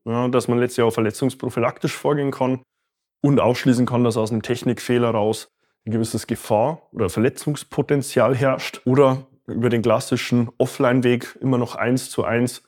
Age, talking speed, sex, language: 20-39, 150 wpm, male, German